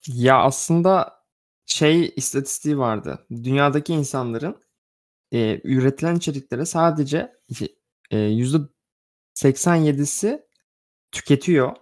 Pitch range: 125-180 Hz